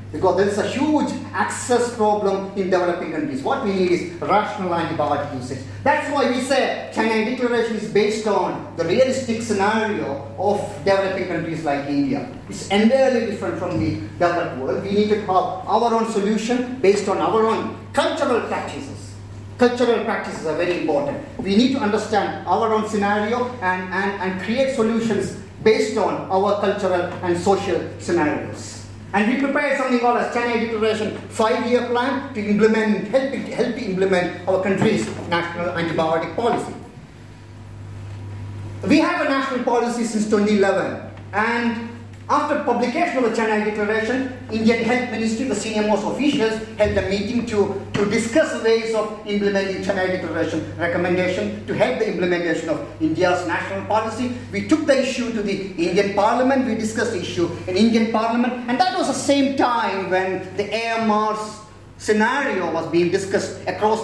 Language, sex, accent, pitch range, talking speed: English, male, Indian, 180-235 Hz, 160 wpm